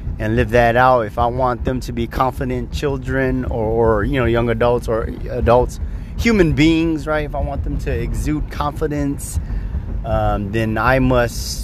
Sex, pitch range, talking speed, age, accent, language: male, 95-130 Hz, 175 wpm, 30-49, American, English